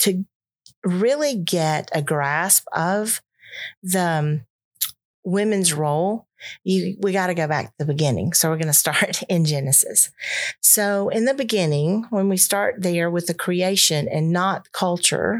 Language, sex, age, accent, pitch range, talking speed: English, female, 40-59, American, 155-190 Hz, 150 wpm